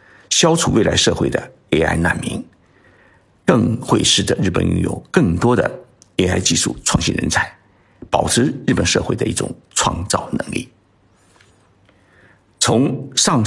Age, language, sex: 60-79, Chinese, male